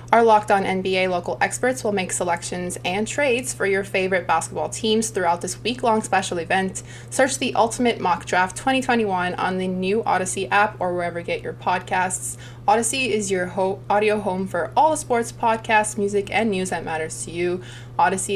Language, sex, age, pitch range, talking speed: English, female, 20-39, 125-205 Hz, 185 wpm